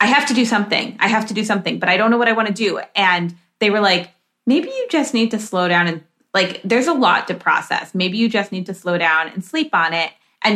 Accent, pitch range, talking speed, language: American, 175-215 Hz, 280 wpm, English